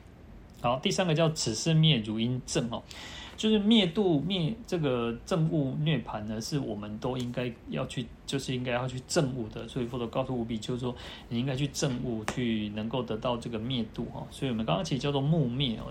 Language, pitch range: Chinese, 115-145 Hz